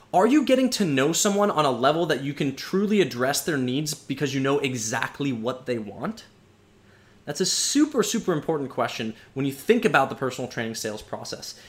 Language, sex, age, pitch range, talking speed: English, male, 20-39, 125-190 Hz, 195 wpm